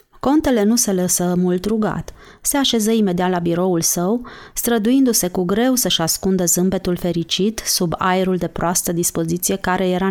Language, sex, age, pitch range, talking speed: Romanian, female, 30-49, 175-210 Hz, 155 wpm